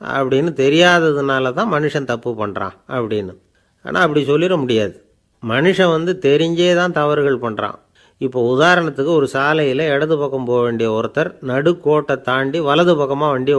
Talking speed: 135 wpm